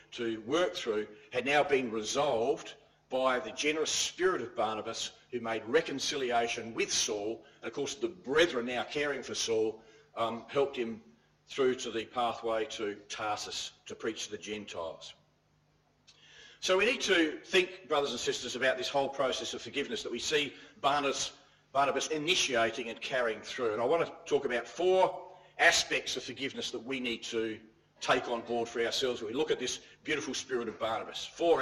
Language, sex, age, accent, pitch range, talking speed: English, male, 40-59, Australian, 115-165 Hz, 175 wpm